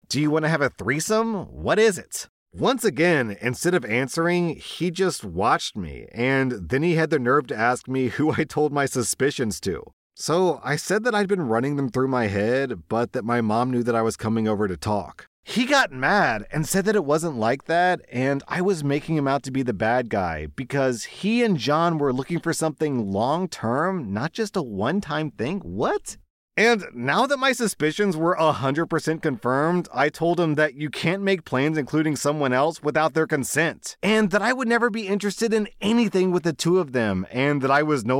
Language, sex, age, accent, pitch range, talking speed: English, male, 30-49, American, 120-170 Hz, 210 wpm